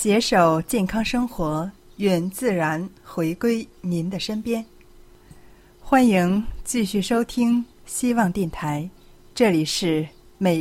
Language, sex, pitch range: Chinese, female, 160-225 Hz